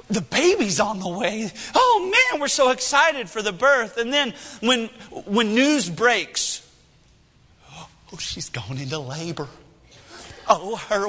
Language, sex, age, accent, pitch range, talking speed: English, male, 30-49, American, 175-255 Hz, 140 wpm